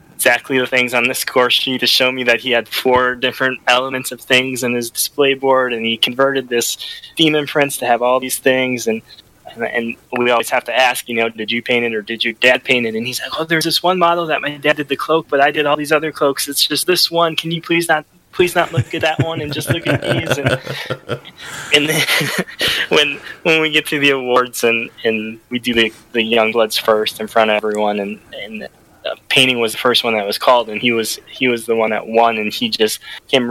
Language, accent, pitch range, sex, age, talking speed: English, American, 115-135 Hz, male, 10-29, 245 wpm